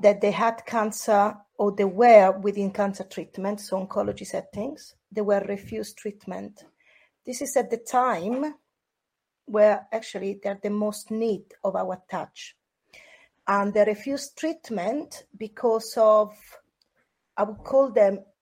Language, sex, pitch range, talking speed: English, female, 200-235 Hz, 135 wpm